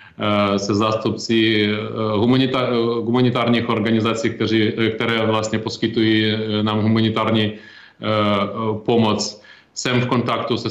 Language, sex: Czech, male